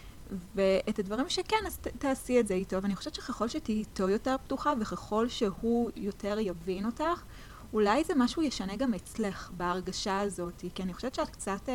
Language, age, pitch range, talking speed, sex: Hebrew, 20-39, 195-250 Hz, 175 wpm, female